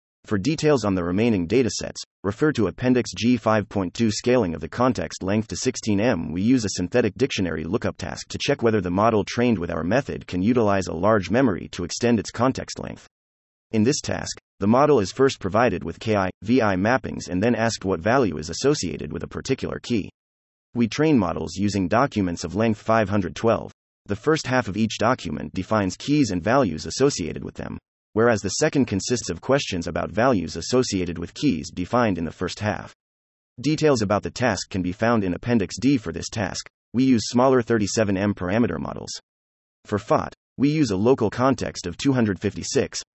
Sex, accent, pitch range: male, American, 90-120 Hz